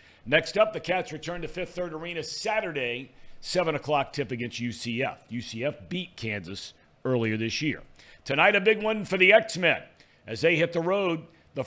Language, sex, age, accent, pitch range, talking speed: English, male, 50-69, American, 130-180 Hz, 170 wpm